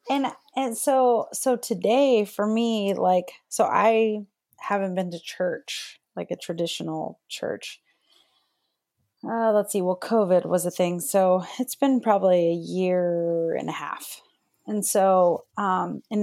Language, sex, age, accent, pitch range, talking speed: English, female, 30-49, American, 165-205 Hz, 145 wpm